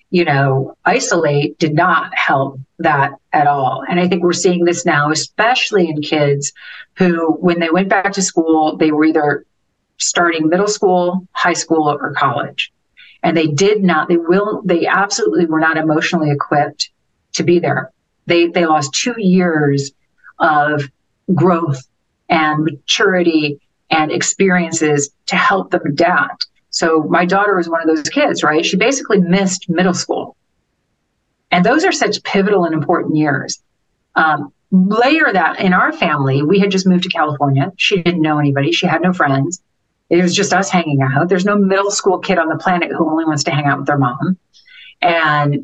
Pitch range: 150-185 Hz